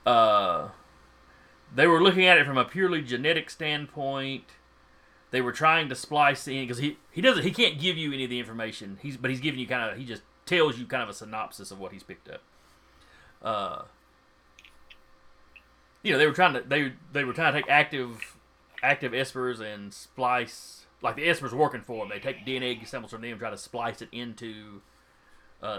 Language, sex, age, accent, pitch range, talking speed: English, male, 30-49, American, 105-145 Hz, 200 wpm